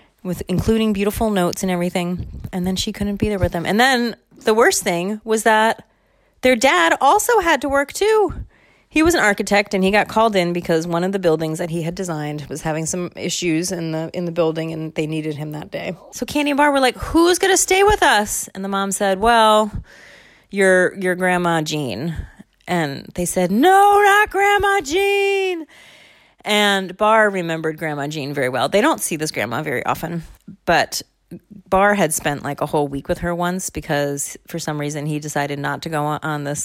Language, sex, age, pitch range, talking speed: English, female, 30-49, 155-220 Hz, 205 wpm